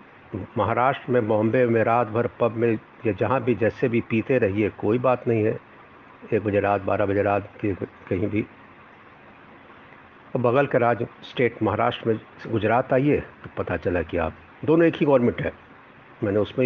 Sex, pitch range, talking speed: male, 105-130 Hz, 170 wpm